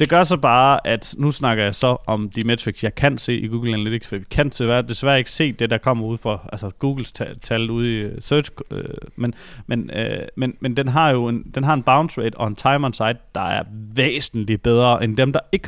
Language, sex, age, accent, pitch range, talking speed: Danish, male, 30-49, native, 115-150 Hz, 240 wpm